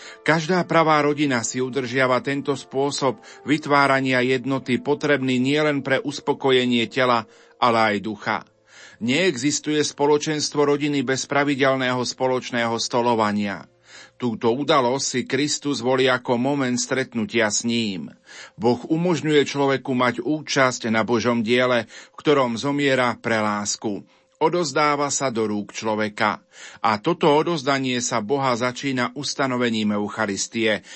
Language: Slovak